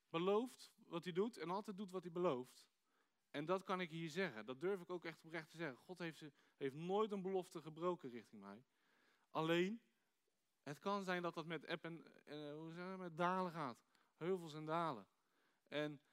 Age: 40-59